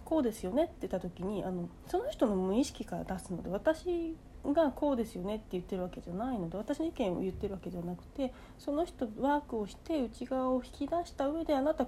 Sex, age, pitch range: female, 40-59, 195-290 Hz